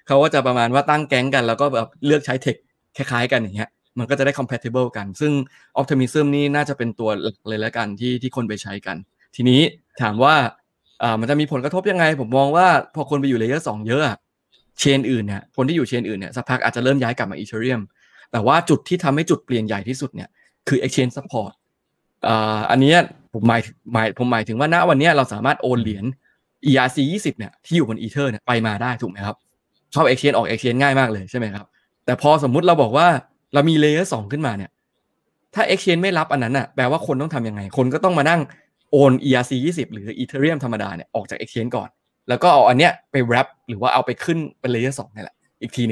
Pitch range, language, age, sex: 115-145 Hz, Thai, 20-39, male